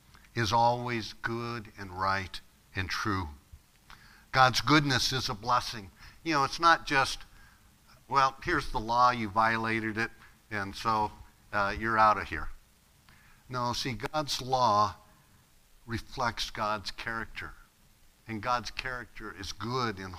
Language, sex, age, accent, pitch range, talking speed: English, male, 60-79, American, 100-130 Hz, 130 wpm